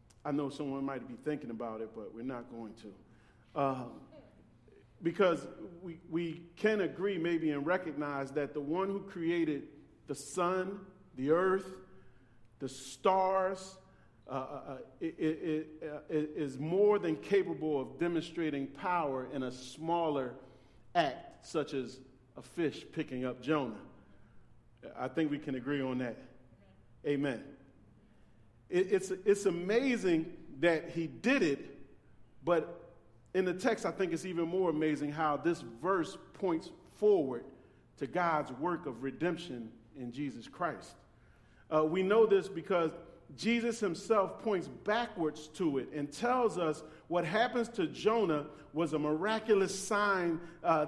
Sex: male